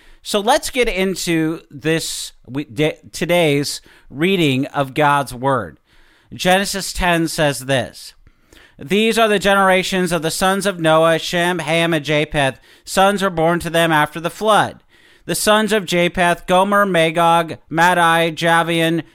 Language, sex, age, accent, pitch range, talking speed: English, male, 40-59, American, 145-185 Hz, 135 wpm